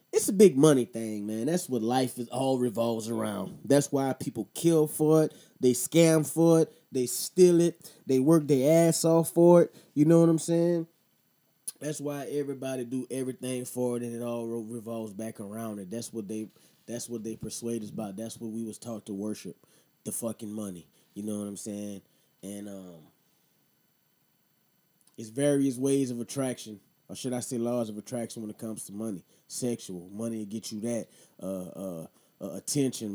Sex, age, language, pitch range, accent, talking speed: male, 20-39, English, 115-160 Hz, American, 190 wpm